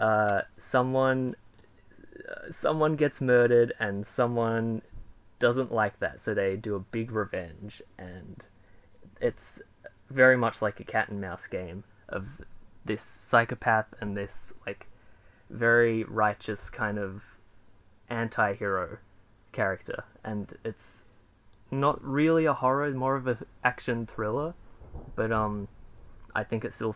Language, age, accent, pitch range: English, 10-29, Australian, 105-125 Hz